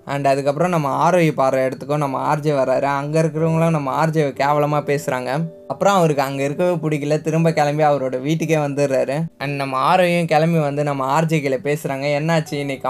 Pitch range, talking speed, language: 135-155 Hz, 170 wpm, Tamil